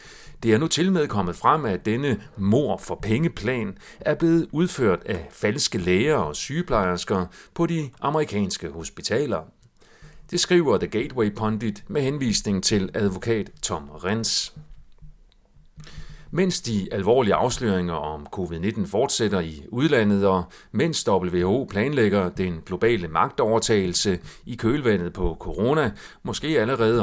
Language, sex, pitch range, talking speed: Danish, male, 95-140 Hz, 130 wpm